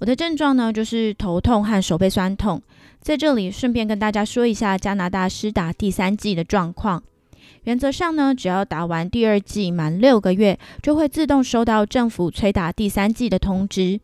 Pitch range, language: 185-245 Hz, Chinese